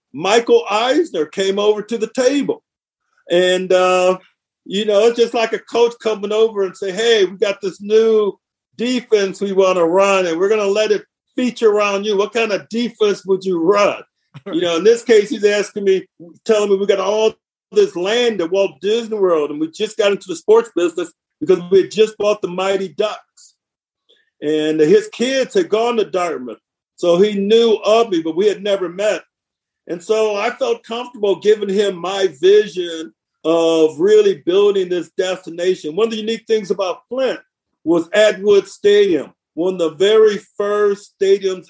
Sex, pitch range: male, 185-230 Hz